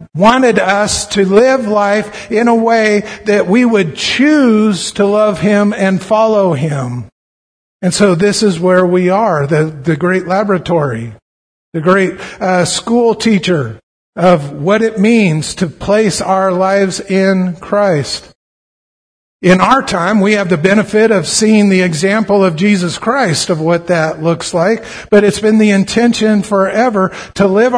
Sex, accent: male, American